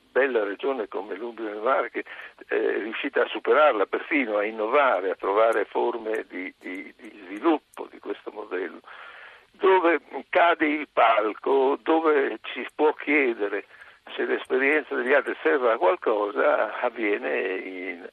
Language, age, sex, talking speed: Italian, 60-79, male, 140 wpm